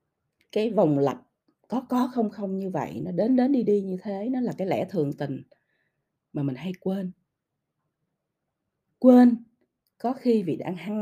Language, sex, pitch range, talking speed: Vietnamese, female, 160-240 Hz, 175 wpm